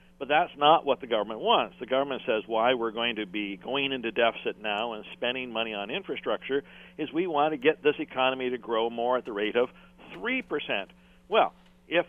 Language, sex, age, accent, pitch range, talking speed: English, male, 50-69, American, 110-145 Hz, 205 wpm